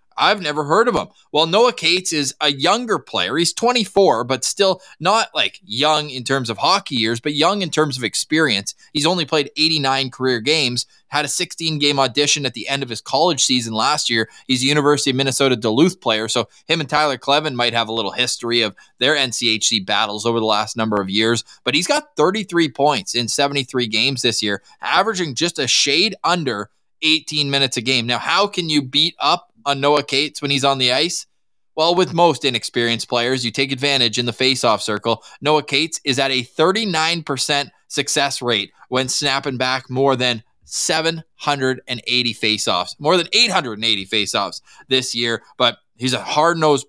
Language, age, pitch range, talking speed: English, 20-39, 120-155 Hz, 190 wpm